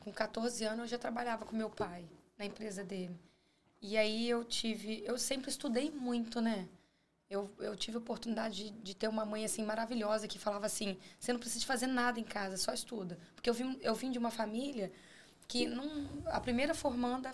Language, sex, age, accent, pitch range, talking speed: Portuguese, female, 20-39, Brazilian, 205-240 Hz, 200 wpm